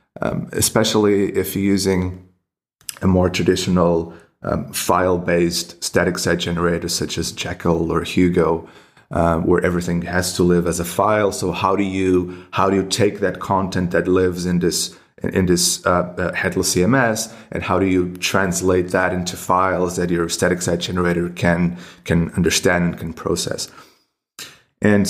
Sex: male